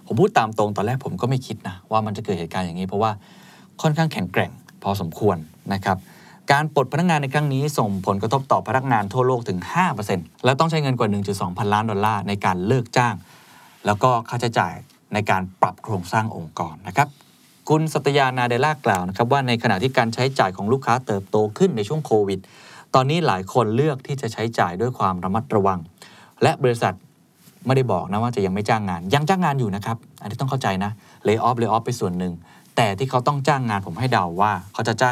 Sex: male